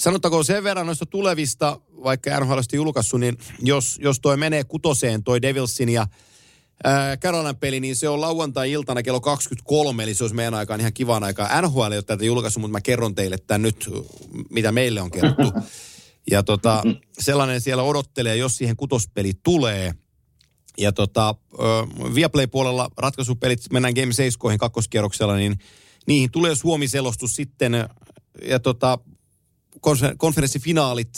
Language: Finnish